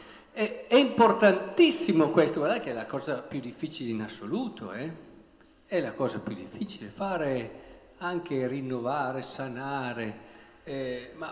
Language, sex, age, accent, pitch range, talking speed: Italian, male, 50-69, native, 125-190 Hz, 125 wpm